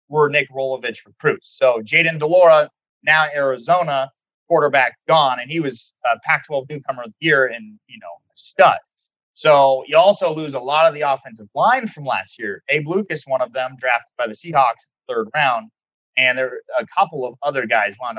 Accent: American